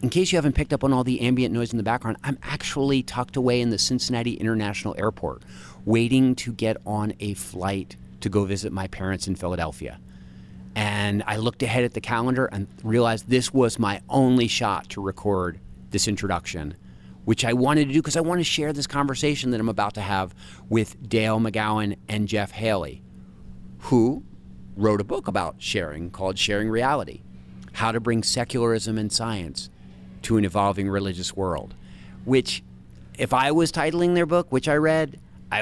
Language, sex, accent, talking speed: English, male, American, 180 wpm